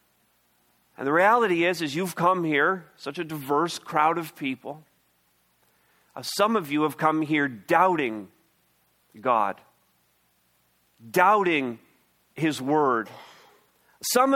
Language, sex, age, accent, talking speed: English, male, 40-59, American, 115 wpm